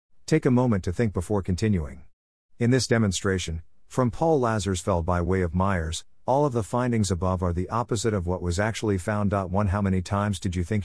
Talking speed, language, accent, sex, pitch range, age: 205 wpm, English, American, male, 90-120 Hz, 50-69